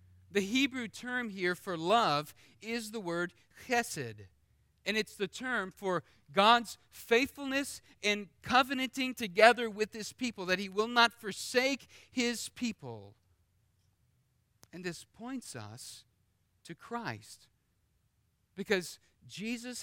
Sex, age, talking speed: male, 40-59, 115 wpm